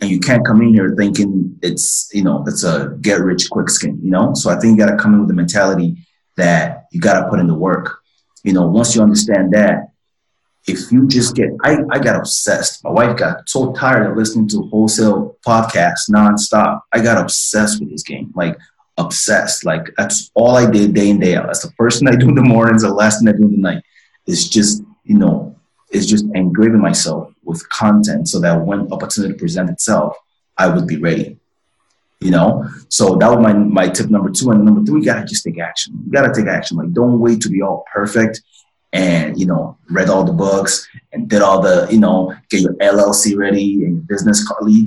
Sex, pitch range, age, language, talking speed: male, 100-115 Hz, 30-49, English, 225 wpm